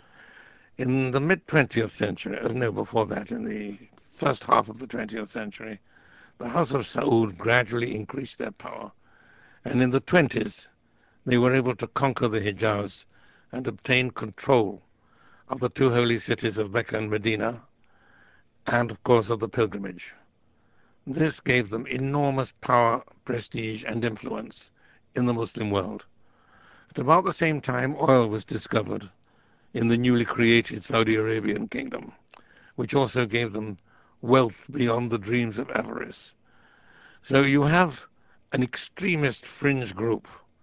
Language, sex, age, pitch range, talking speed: English, male, 60-79, 110-135 Hz, 140 wpm